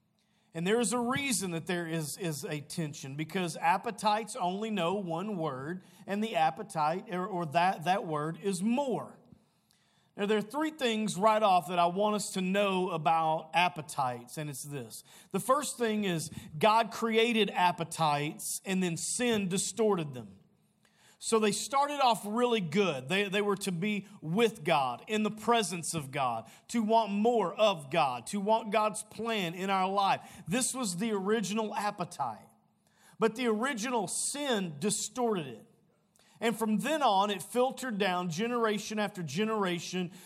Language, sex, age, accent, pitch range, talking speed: English, male, 40-59, American, 175-220 Hz, 160 wpm